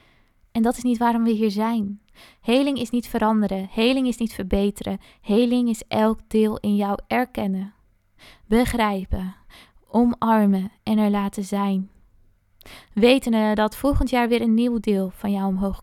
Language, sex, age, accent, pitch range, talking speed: Dutch, female, 20-39, Dutch, 195-225 Hz, 150 wpm